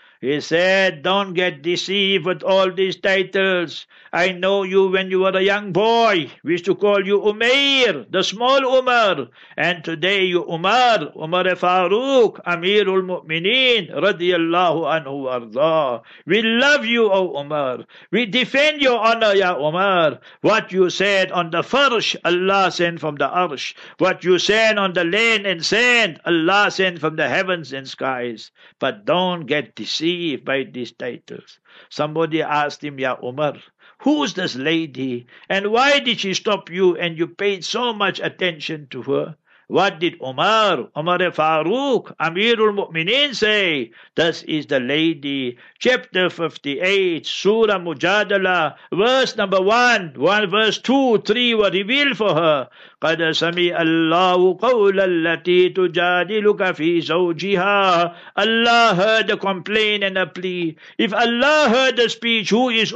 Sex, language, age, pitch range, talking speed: male, English, 60-79, 165-215 Hz, 145 wpm